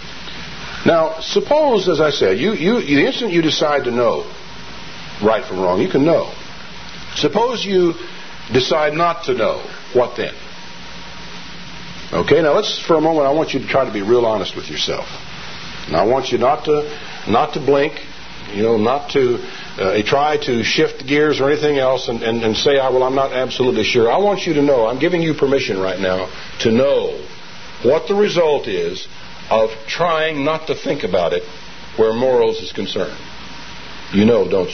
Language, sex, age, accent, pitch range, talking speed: English, male, 60-79, American, 130-205 Hz, 185 wpm